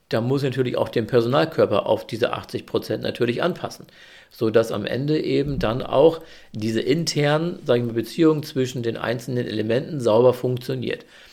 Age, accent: 50-69, German